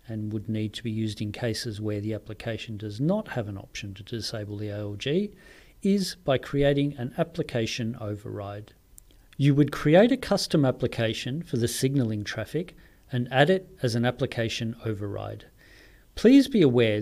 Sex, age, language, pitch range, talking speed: male, 40-59, English, 110-140 Hz, 160 wpm